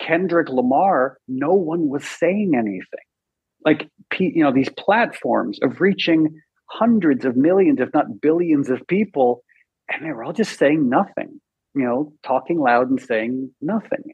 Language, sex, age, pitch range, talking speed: English, male, 50-69, 130-185 Hz, 155 wpm